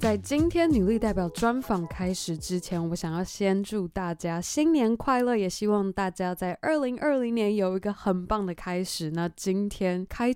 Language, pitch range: Chinese, 170-215 Hz